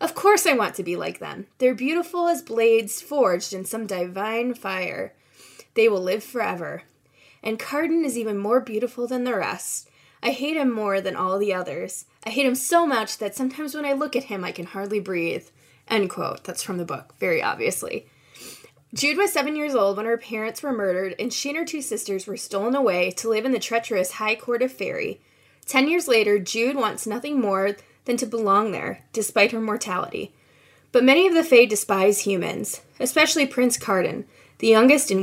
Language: English